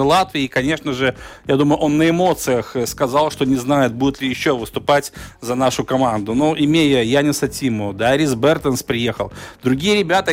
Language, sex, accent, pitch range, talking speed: Russian, male, native, 125-150 Hz, 180 wpm